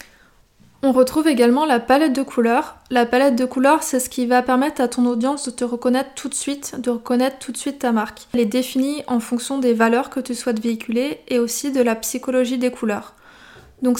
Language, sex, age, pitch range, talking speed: French, female, 20-39, 240-265 Hz, 220 wpm